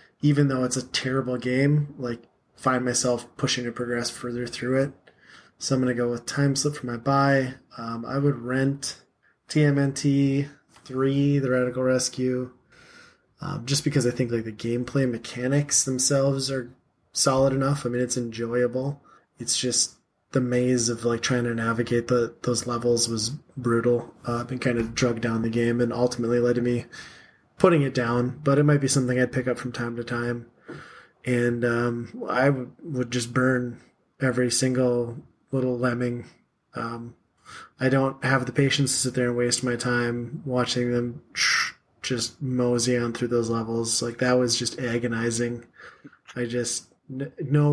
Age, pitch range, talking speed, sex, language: 20-39, 120-135 Hz, 170 wpm, male, English